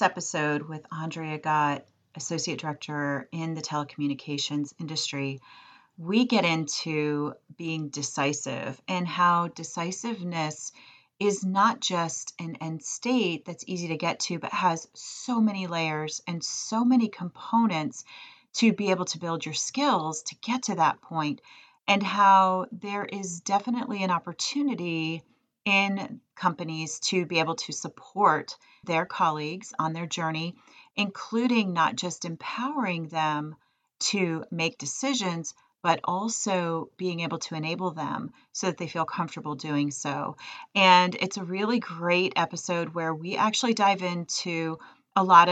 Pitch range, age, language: 160-195 Hz, 30-49, English